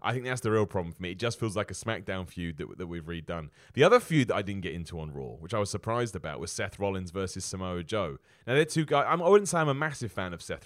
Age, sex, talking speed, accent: 30-49, male, 305 wpm, British